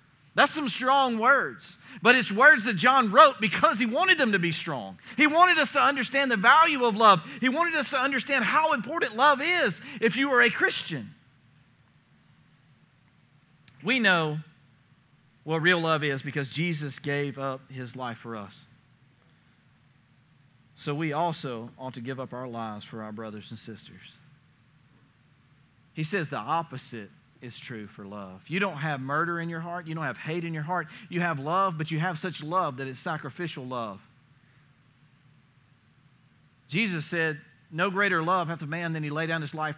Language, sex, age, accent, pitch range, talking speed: English, male, 40-59, American, 140-185 Hz, 175 wpm